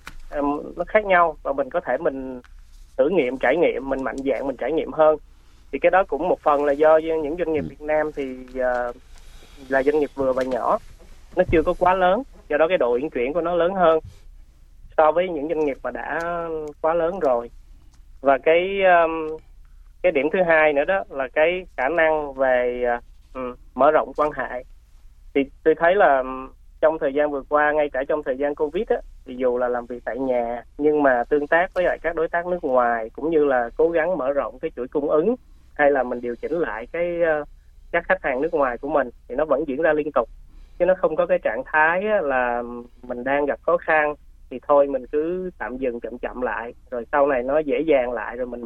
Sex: male